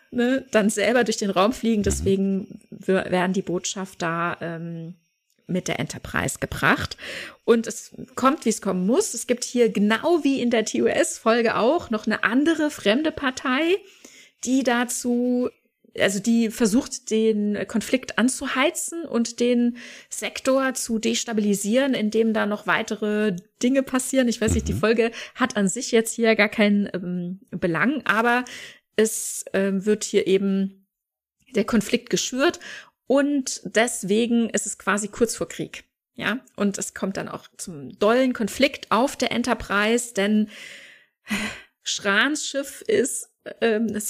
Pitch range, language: 200-255 Hz, German